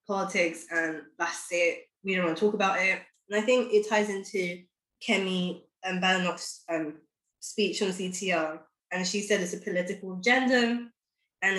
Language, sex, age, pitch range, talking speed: English, female, 20-39, 170-210 Hz, 160 wpm